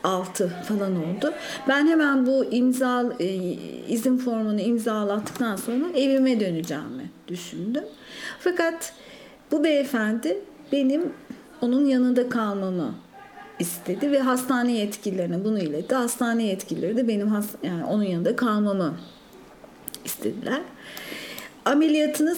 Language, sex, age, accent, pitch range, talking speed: Turkish, female, 50-69, native, 200-275 Hz, 105 wpm